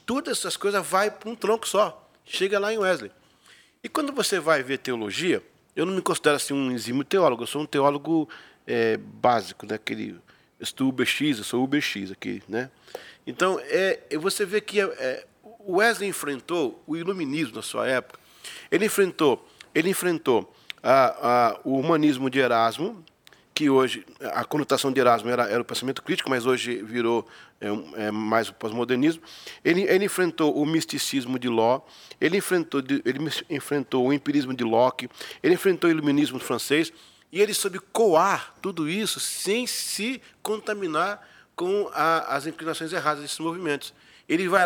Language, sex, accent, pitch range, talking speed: Portuguese, male, Brazilian, 140-215 Hz, 160 wpm